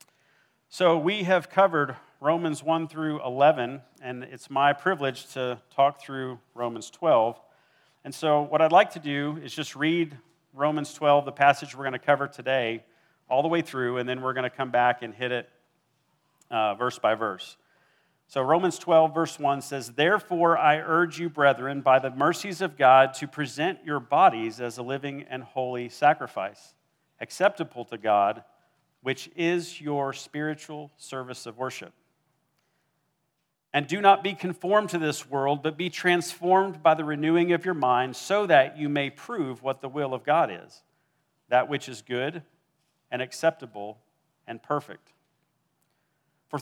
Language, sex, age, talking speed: English, male, 50-69, 165 wpm